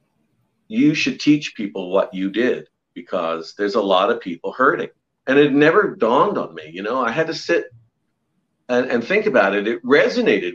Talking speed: 190 wpm